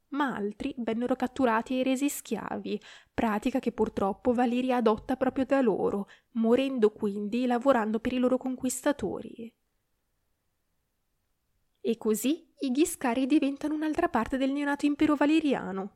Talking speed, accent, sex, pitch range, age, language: 125 wpm, native, female, 210-275 Hz, 20-39, Italian